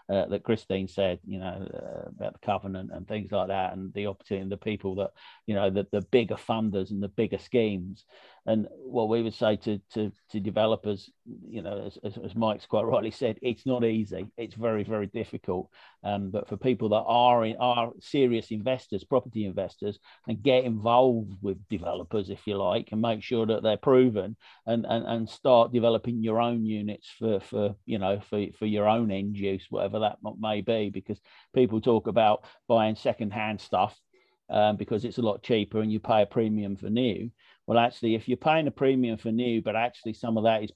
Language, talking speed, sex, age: English, 205 wpm, male, 50-69